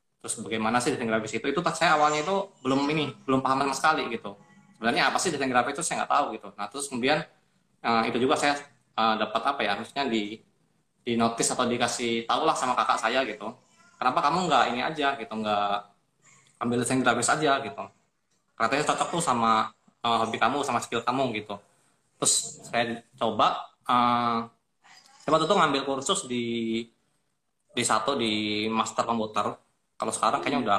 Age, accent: 20-39, native